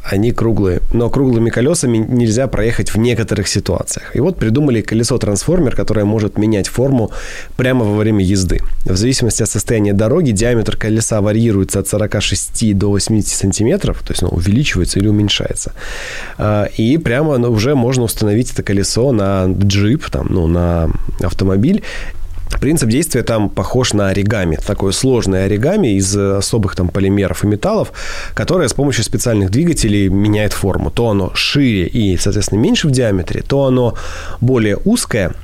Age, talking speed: 20-39, 145 wpm